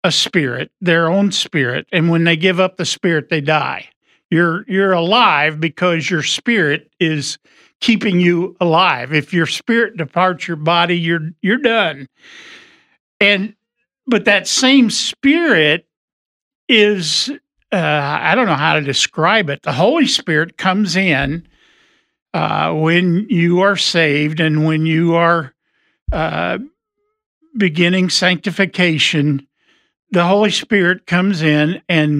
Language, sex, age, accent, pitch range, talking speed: English, male, 50-69, American, 160-205 Hz, 130 wpm